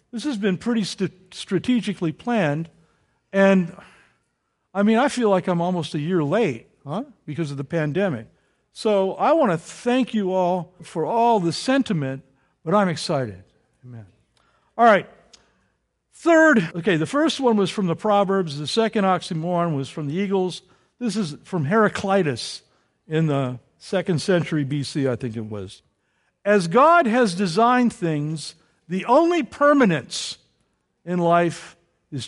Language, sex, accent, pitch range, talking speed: English, male, American, 165-230 Hz, 150 wpm